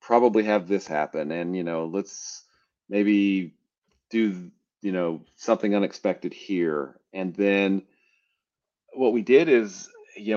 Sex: male